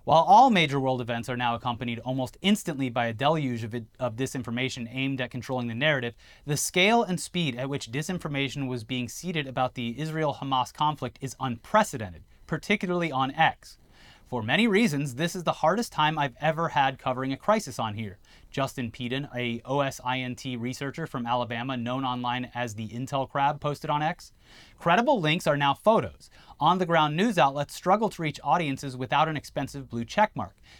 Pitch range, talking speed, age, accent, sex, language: 125-165 Hz, 175 wpm, 30-49, American, male, English